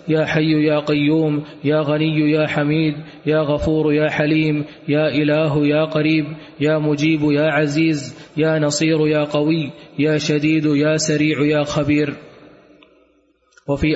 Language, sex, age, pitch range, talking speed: Arabic, male, 20-39, 150-160 Hz, 135 wpm